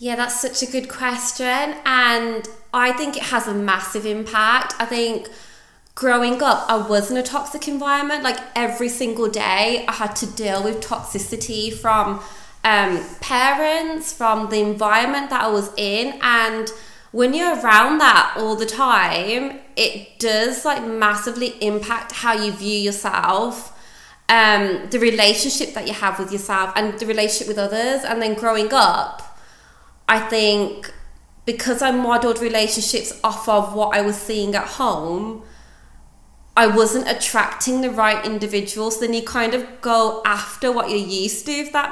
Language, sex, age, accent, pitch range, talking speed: English, female, 20-39, British, 205-245 Hz, 155 wpm